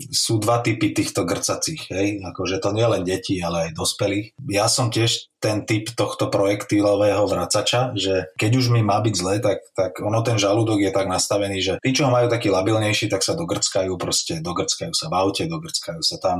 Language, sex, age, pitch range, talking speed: Slovak, male, 30-49, 95-120 Hz, 200 wpm